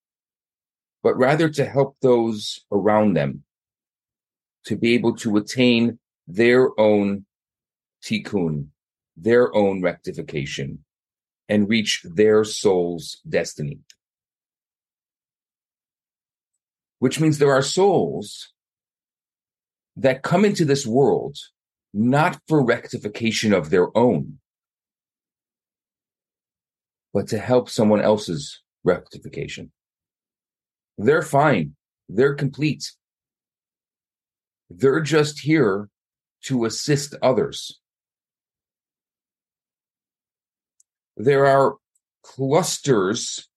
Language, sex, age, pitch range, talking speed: English, male, 40-59, 105-140 Hz, 80 wpm